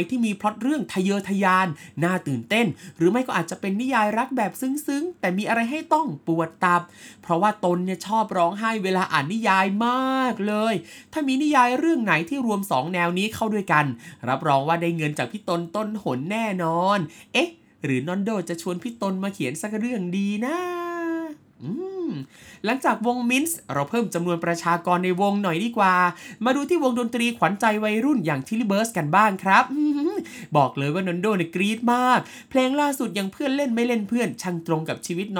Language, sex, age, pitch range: Thai, male, 20-39, 175-245 Hz